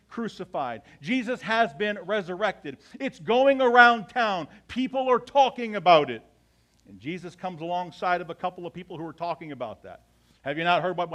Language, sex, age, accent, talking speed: English, male, 50-69, American, 180 wpm